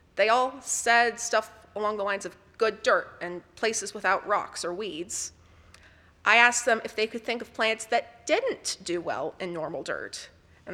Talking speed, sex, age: 185 wpm, female, 30-49